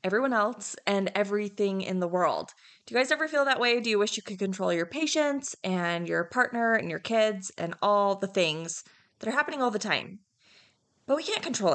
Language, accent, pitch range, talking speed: English, American, 185-245 Hz, 215 wpm